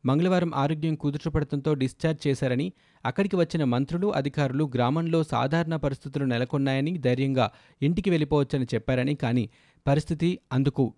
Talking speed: 110 wpm